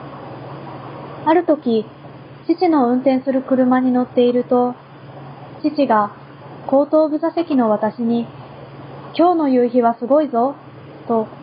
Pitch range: 200-270 Hz